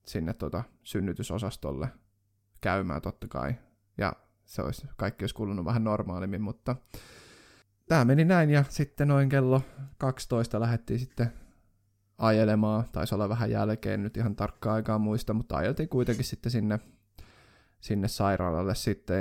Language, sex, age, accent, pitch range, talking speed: Finnish, male, 20-39, native, 100-120 Hz, 135 wpm